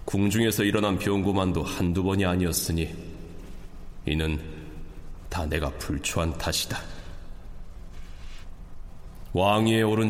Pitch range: 85-95 Hz